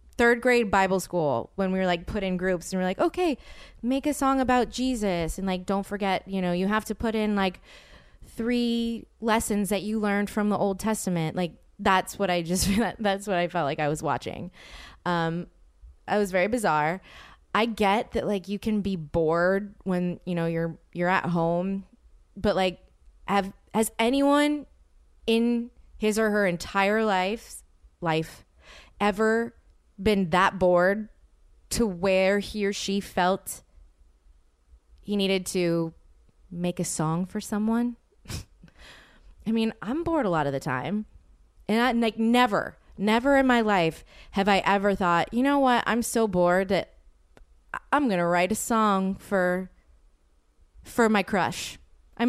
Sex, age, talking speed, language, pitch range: female, 20-39, 165 wpm, English, 170-220 Hz